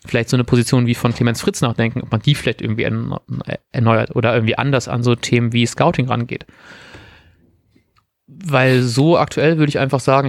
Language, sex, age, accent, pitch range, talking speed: German, male, 30-49, German, 120-140 Hz, 180 wpm